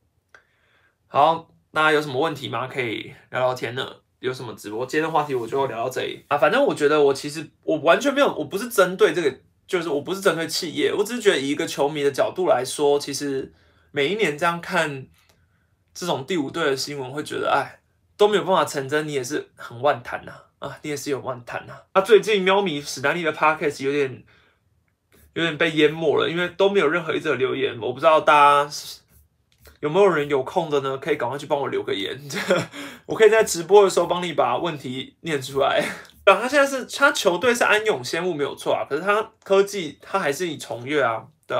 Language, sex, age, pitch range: Chinese, male, 20-39, 135-185 Hz